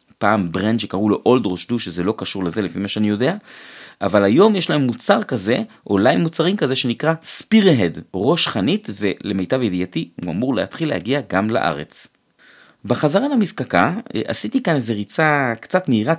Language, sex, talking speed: Hebrew, male, 165 wpm